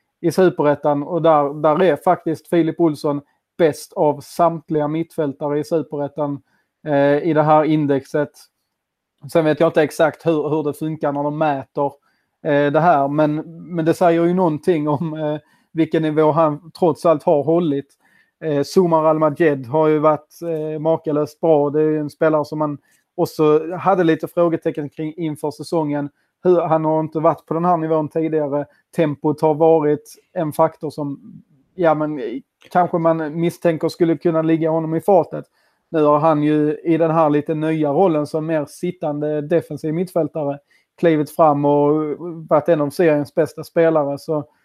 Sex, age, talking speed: male, 30-49, 160 wpm